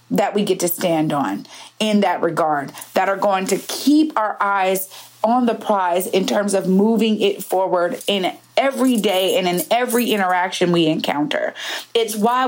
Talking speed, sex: 175 wpm, female